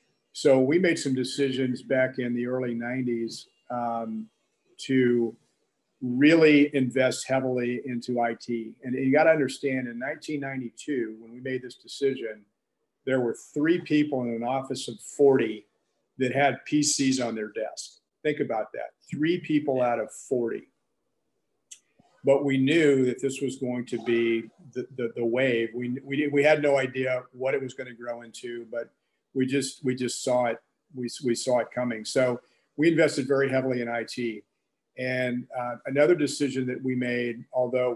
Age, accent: 50-69, American